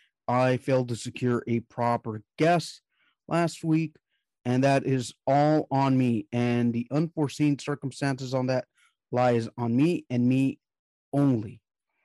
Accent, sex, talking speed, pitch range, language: American, male, 135 wpm, 125-155 Hz, English